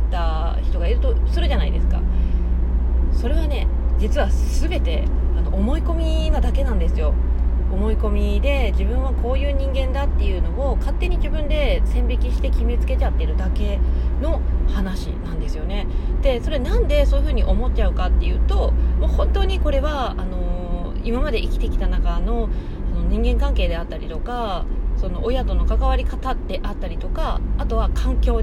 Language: Japanese